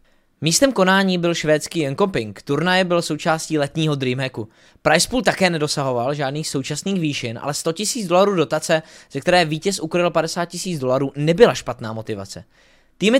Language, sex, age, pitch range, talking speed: Czech, male, 20-39, 145-190 Hz, 145 wpm